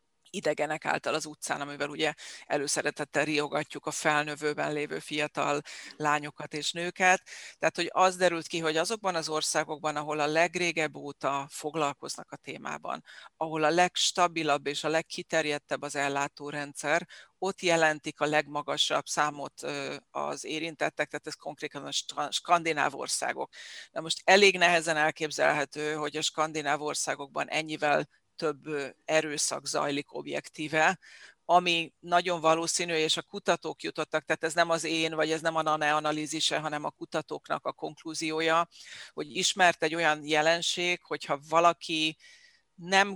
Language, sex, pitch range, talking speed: Hungarian, female, 150-170 Hz, 135 wpm